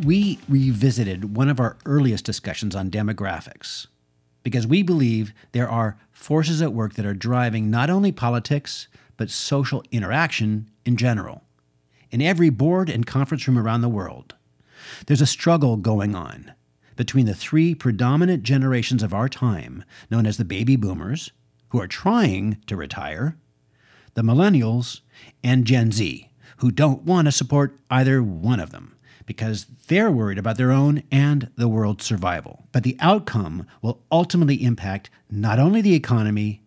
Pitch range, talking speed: 105-140 Hz, 155 wpm